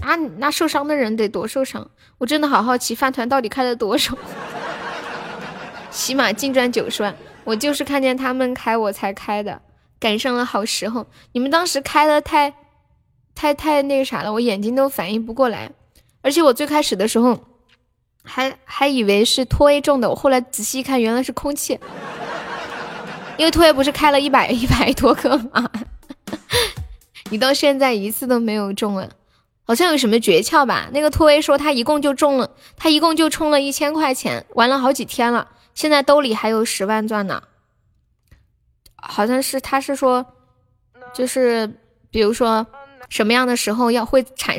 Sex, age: female, 10-29